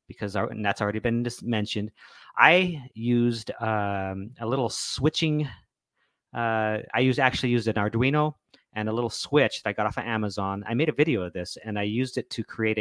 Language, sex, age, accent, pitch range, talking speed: English, male, 40-59, American, 105-125 Hz, 190 wpm